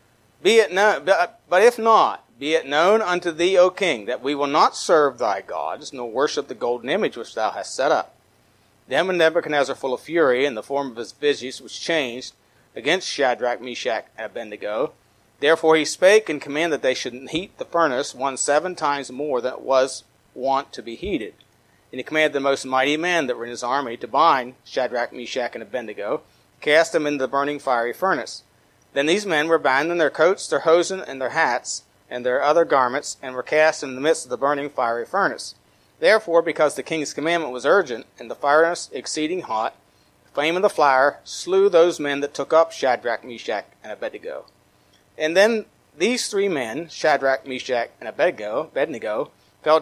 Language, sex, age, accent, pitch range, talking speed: English, male, 40-59, American, 135-170 Hz, 195 wpm